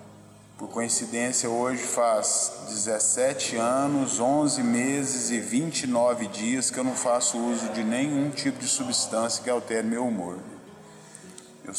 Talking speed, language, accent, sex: 130 wpm, Portuguese, Brazilian, male